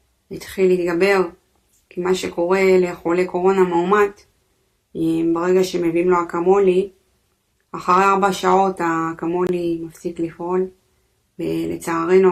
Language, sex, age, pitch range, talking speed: Hebrew, female, 20-39, 165-185 Hz, 95 wpm